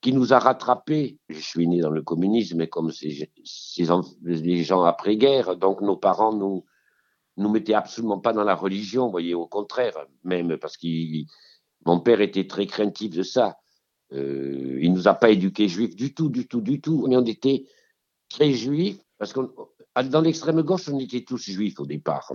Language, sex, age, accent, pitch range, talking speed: French, male, 60-79, French, 90-125 Hz, 195 wpm